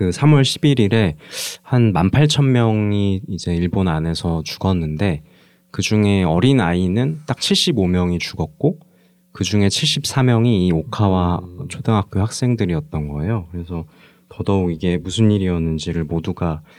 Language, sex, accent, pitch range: Korean, male, native, 85-120 Hz